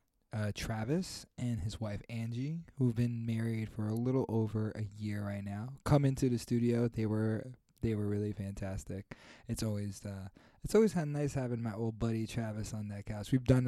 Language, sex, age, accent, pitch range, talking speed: English, male, 20-39, American, 110-130 Hz, 195 wpm